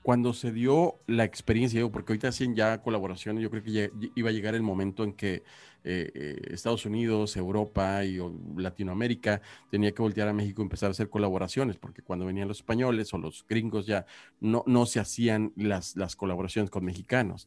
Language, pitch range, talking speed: Spanish, 100-120 Hz, 185 wpm